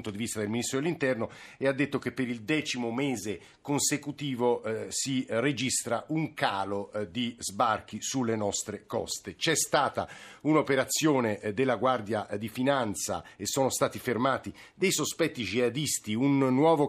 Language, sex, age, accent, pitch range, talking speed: Italian, male, 50-69, native, 115-140 Hz, 155 wpm